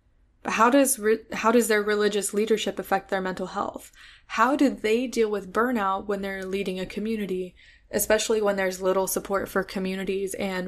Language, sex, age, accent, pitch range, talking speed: English, female, 20-39, American, 190-220 Hz, 175 wpm